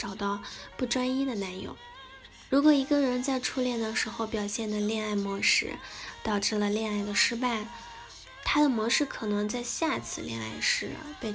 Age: 10-29